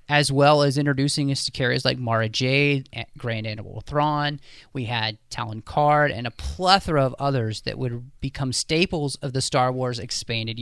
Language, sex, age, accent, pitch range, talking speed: English, male, 30-49, American, 120-160 Hz, 175 wpm